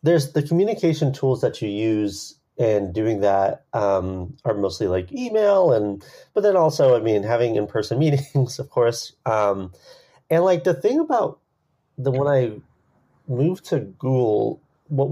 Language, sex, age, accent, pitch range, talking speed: English, male, 30-49, American, 110-170 Hz, 155 wpm